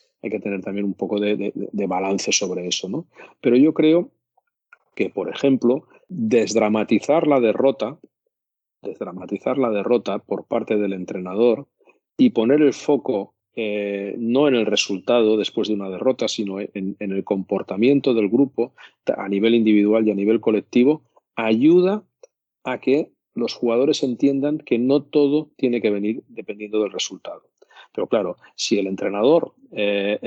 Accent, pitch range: Spanish, 105-140 Hz